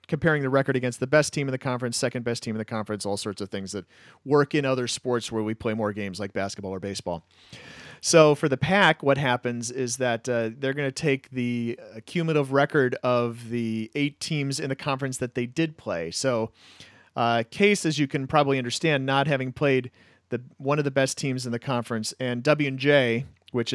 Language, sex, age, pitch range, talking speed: English, male, 40-59, 110-145 Hz, 210 wpm